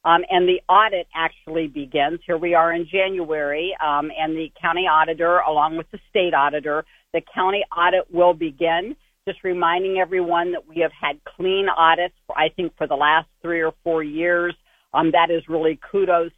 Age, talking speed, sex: 50-69, 185 wpm, female